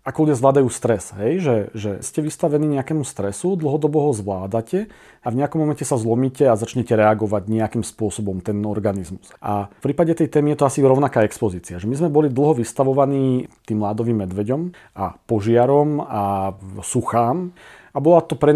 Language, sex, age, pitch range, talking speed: Slovak, male, 40-59, 110-135 Hz, 170 wpm